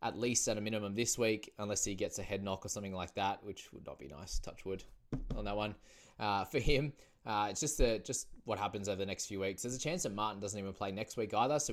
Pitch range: 95-120 Hz